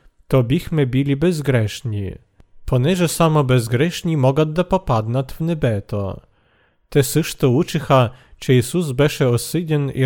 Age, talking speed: 40-59, 120 wpm